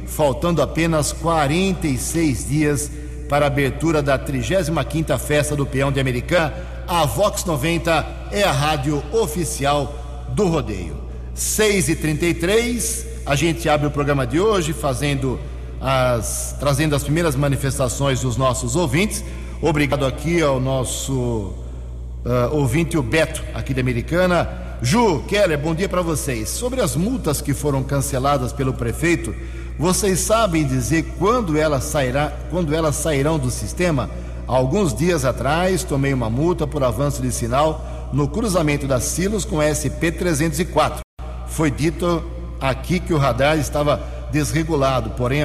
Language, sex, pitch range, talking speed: English, male, 125-160 Hz, 135 wpm